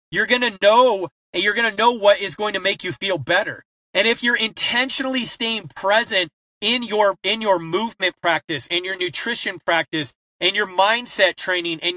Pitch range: 180-235 Hz